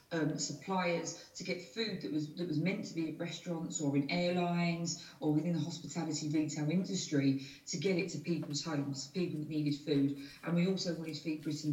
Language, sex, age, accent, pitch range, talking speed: English, female, 40-59, British, 150-175 Hz, 200 wpm